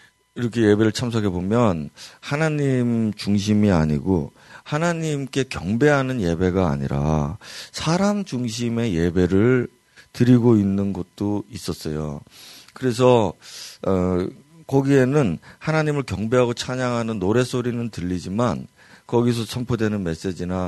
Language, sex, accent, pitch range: Korean, male, native, 95-130 Hz